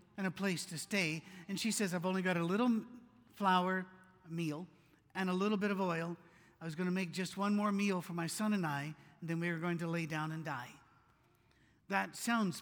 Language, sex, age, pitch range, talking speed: English, male, 50-69, 160-210 Hz, 225 wpm